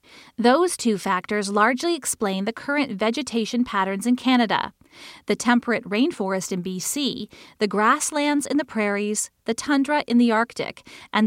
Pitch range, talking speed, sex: 210-270 Hz, 145 wpm, female